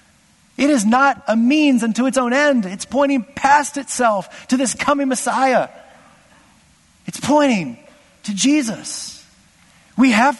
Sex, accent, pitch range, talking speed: male, American, 160-230 Hz, 135 wpm